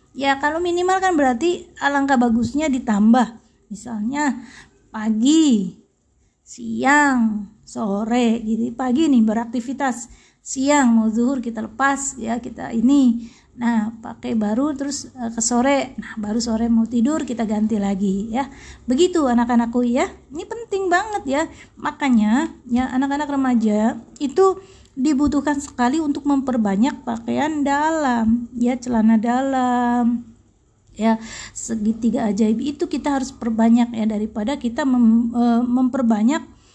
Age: 20-39